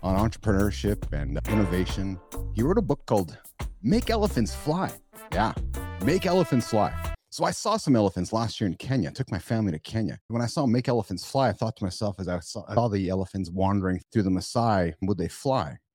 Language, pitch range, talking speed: English, 90-120 Hz, 205 wpm